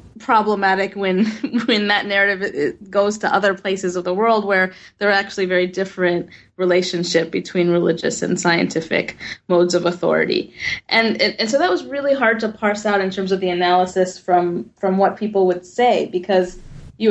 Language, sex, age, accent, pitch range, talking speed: English, female, 20-39, American, 185-210 Hz, 175 wpm